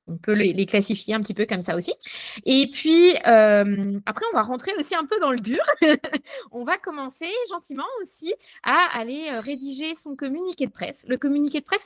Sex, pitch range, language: female, 235-310 Hz, French